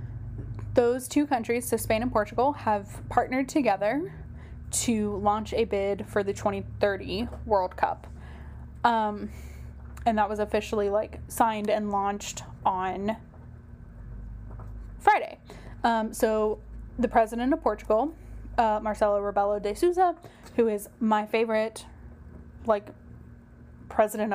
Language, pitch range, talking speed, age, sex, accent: English, 200-240 Hz, 115 wpm, 10-29, female, American